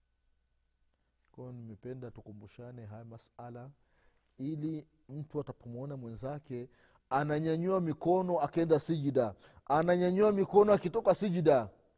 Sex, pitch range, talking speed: male, 95-150 Hz, 85 wpm